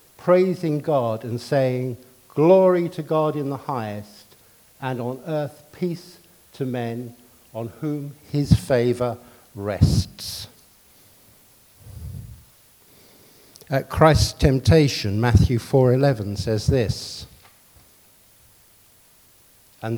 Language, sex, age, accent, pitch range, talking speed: English, male, 60-79, British, 105-150 Hz, 85 wpm